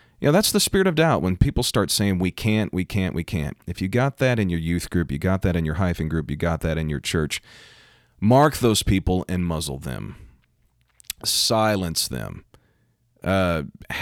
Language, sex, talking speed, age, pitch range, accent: English, male, 205 wpm, 40-59, 80-100 Hz, American